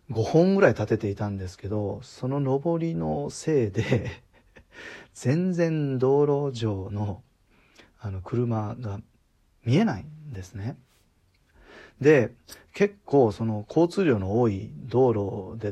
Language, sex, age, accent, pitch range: Japanese, male, 40-59, native, 100-135 Hz